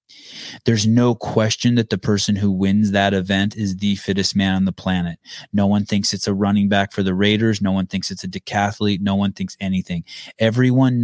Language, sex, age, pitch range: English, male, 20-39, 100-125 Hz